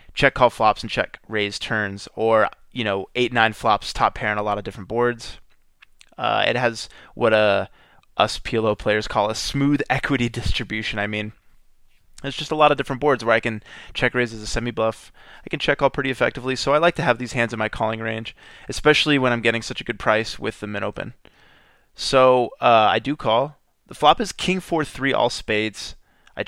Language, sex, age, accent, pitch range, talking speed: English, male, 20-39, American, 105-125 Hz, 210 wpm